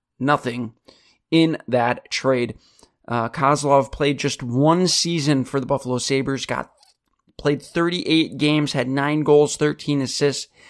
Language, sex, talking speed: English, male, 130 wpm